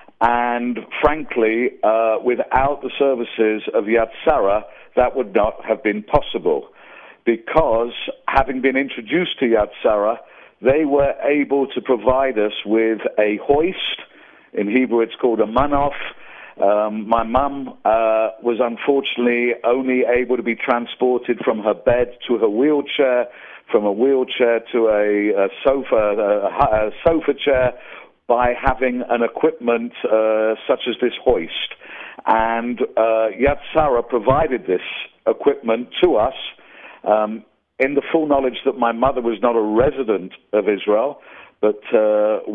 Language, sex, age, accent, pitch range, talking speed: English, male, 50-69, British, 110-130 Hz, 140 wpm